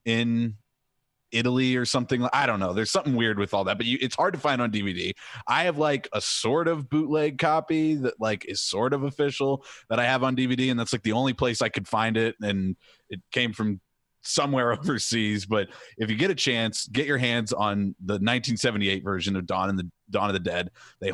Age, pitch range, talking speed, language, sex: 30-49, 100-130 Hz, 220 wpm, English, male